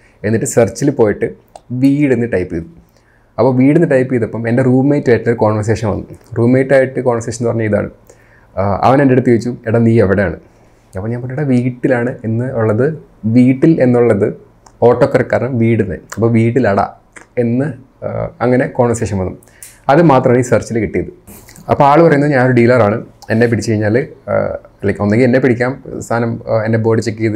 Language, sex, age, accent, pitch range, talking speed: Malayalam, male, 30-49, native, 110-125 Hz, 145 wpm